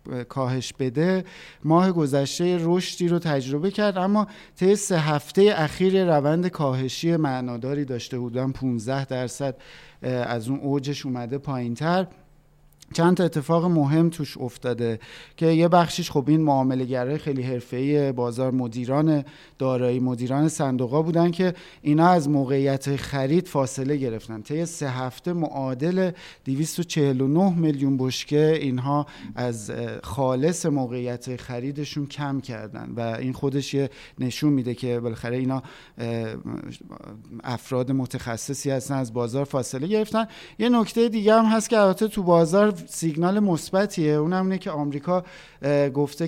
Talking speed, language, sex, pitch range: 125 wpm, Persian, male, 130-170 Hz